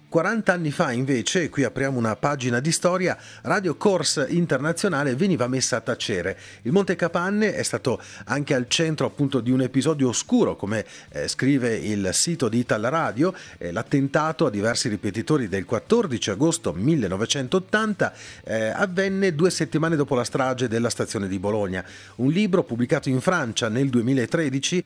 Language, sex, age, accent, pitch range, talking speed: Italian, male, 40-59, native, 115-165 Hz, 150 wpm